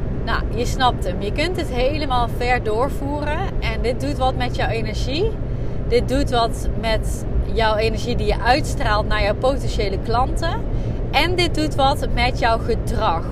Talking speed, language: 165 wpm, Dutch